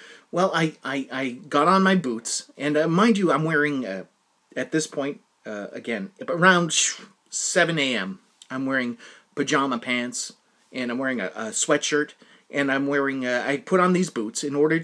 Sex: male